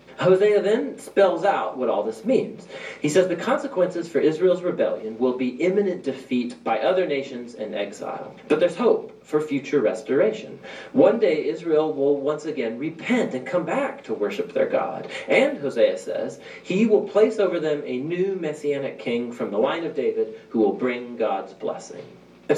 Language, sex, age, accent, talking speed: English, male, 40-59, American, 180 wpm